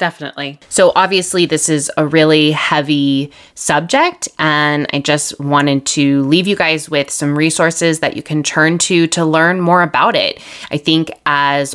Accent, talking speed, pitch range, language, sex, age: American, 170 wpm, 145-170 Hz, English, female, 20-39